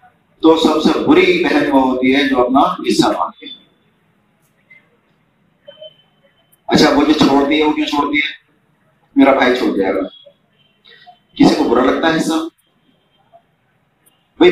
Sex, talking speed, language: male, 125 wpm, Urdu